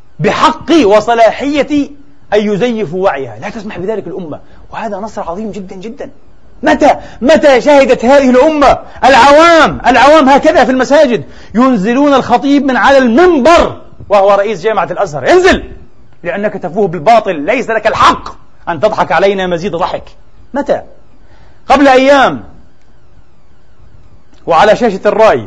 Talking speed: 120 wpm